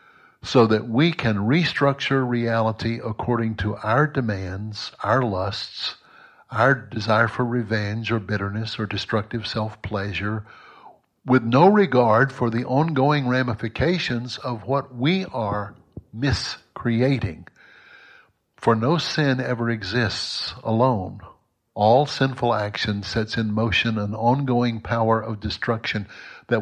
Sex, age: male, 60-79